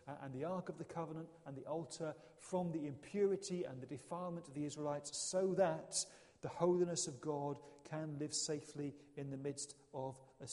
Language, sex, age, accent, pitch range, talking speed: English, male, 40-59, British, 140-180 Hz, 180 wpm